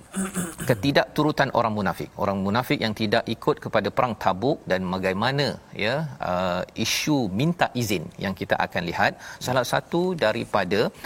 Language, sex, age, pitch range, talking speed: Malayalam, male, 40-59, 105-130 Hz, 140 wpm